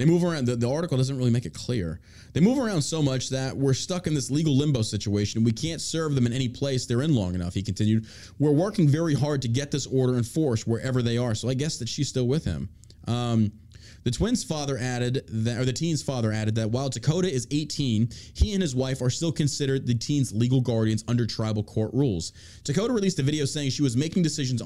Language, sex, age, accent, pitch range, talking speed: English, male, 20-39, American, 105-135 Hz, 235 wpm